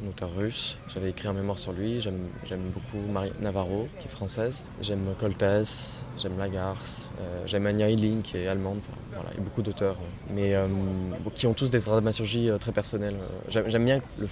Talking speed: 200 wpm